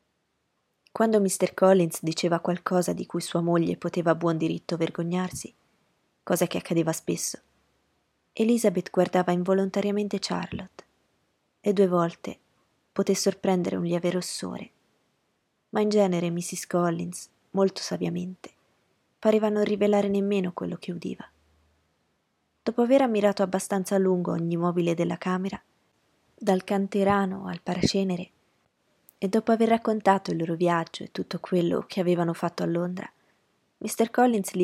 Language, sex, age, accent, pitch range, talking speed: Italian, female, 20-39, native, 175-200 Hz, 130 wpm